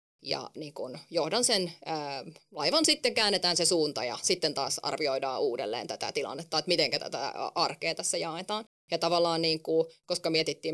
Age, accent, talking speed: 30-49, native, 170 wpm